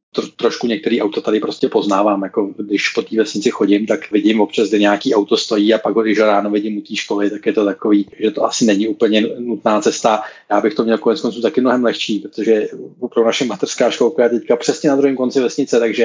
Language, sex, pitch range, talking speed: Czech, male, 110-125 Hz, 225 wpm